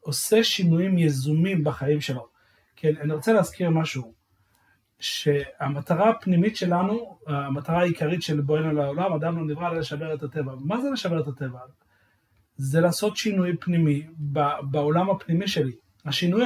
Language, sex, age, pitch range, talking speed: Hebrew, male, 30-49, 145-195 Hz, 140 wpm